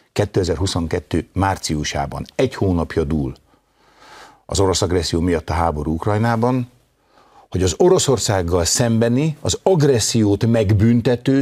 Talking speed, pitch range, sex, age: 100 wpm, 85-120 Hz, male, 60-79